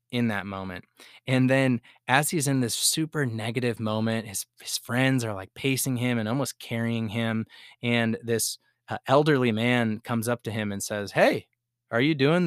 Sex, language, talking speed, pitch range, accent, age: male, English, 185 wpm, 110-125 Hz, American, 20-39